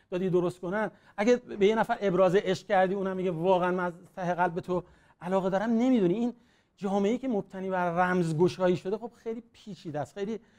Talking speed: 180 wpm